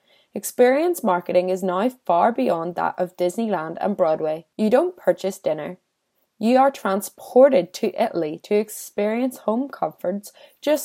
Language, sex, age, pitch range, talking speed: English, female, 20-39, 180-260 Hz, 140 wpm